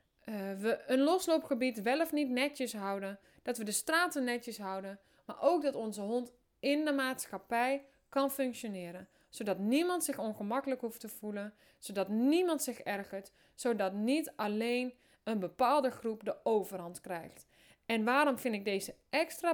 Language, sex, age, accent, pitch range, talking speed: Dutch, female, 20-39, Dutch, 210-280 Hz, 155 wpm